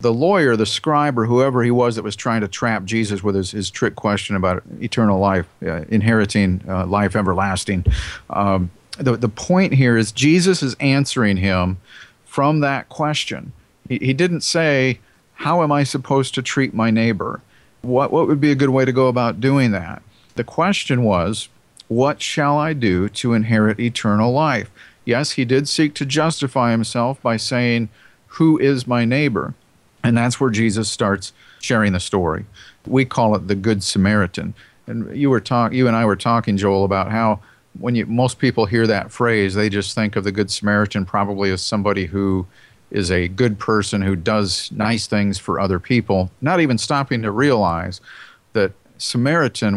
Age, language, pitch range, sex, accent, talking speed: 50-69, English, 100-130 Hz, male, American, 180 wpm